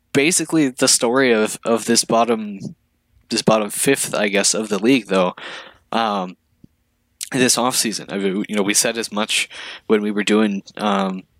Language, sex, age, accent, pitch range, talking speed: English, male, 10-29, American, 95-115 Hz, 170 wpm